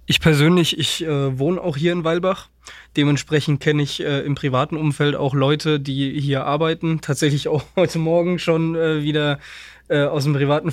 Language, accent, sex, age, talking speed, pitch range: German, German, male, 20-39, 180 wpm, 140-160 Hz